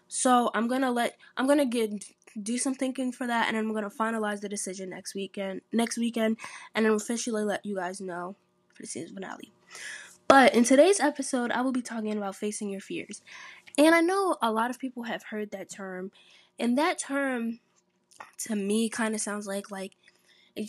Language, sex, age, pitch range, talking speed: English, female, 10-29, 200-250 Hz, 195 wpm